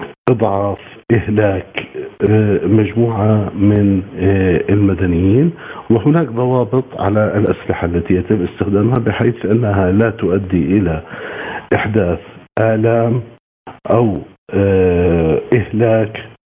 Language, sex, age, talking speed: Arabic, male, 50-69, 75 wpm